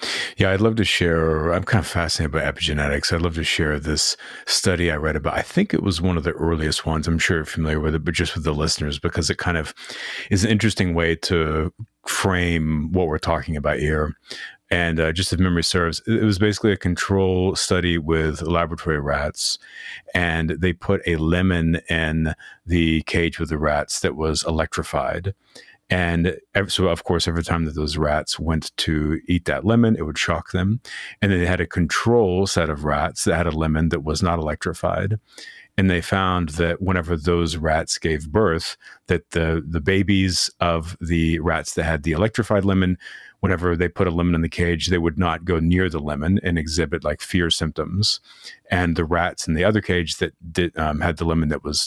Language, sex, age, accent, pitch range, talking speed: English, male, 40-59, American, 80-90 Hz, 200 wpm